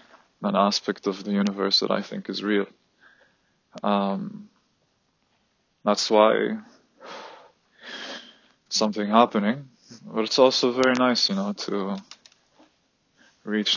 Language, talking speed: English, 105 wpm